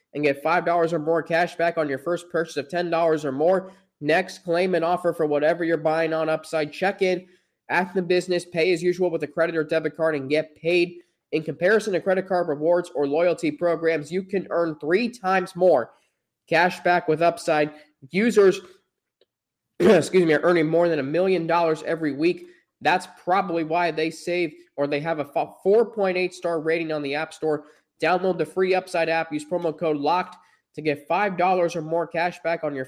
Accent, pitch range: American, 160-185 Hz